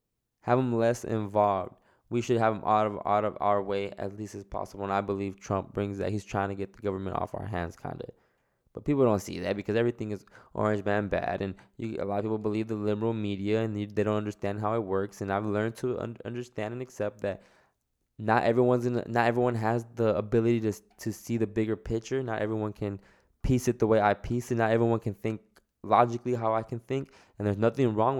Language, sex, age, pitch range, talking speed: English, male, 10-29, 105-120 Hz, 235 wpm